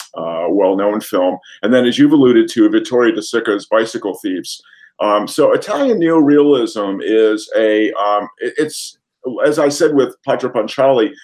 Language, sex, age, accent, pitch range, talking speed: English, male, 50-69, American, 105-160 Hz, 150 wpm